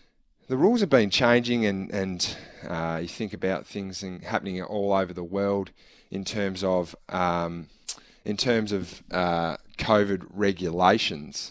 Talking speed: 145 wpm